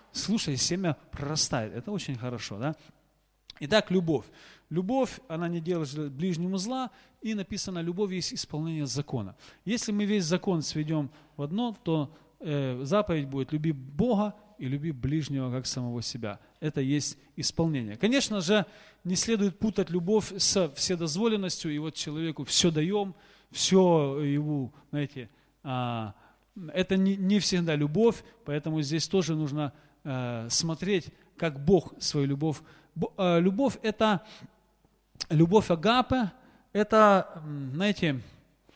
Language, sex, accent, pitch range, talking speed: Russian, male, native, 140-195 Hz, 125 wpm